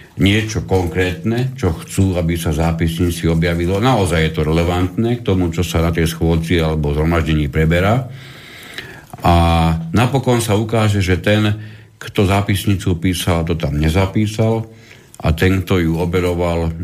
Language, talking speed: Slovak, 140 wpm